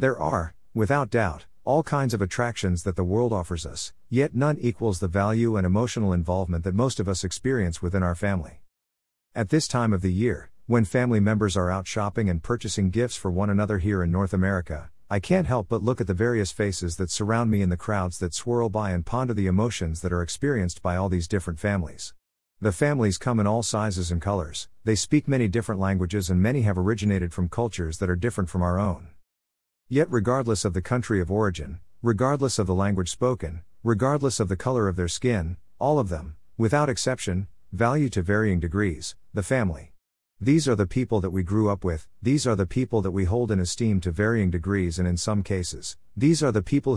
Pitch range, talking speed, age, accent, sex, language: 90-120 Hz, 210 wpm, 50-69, American, male, English